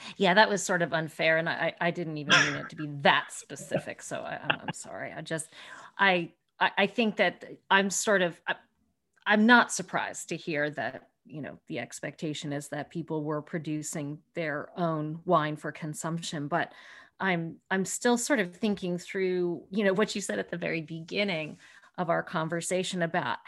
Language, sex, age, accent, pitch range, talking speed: English, female, 40-59, American, 160-195 Hz, 185 wpm